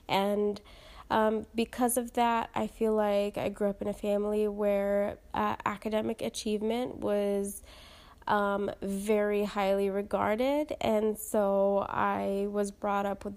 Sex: female